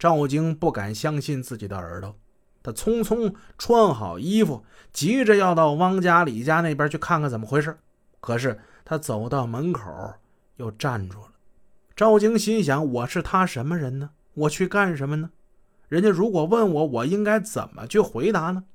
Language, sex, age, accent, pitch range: Chinese, male, 30-49, native, 130-190 Hz